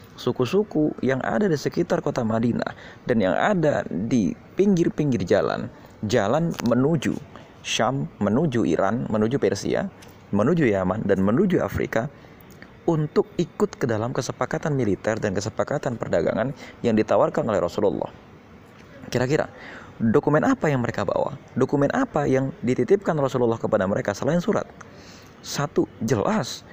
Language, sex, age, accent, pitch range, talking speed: Indonesian, male, 30-49, native, 115-165 Hz, 125 wpm